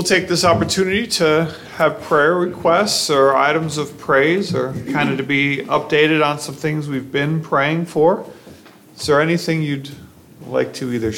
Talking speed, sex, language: 170 wpm, male, English